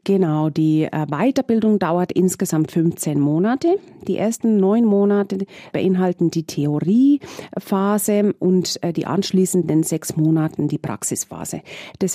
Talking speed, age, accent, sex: 110 wpm, 40-59, German, female